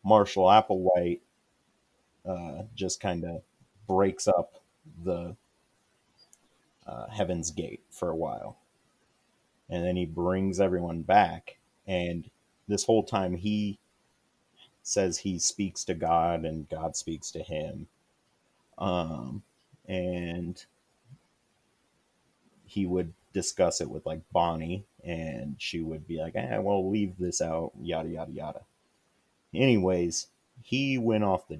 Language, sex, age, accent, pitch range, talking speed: English, male, 30-49, American, 85-95 Hz, 120 wpm